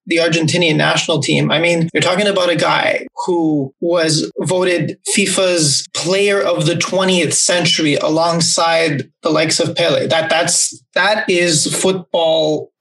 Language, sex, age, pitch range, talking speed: English, male, 20-39, 170-200 Hz, 140 wpm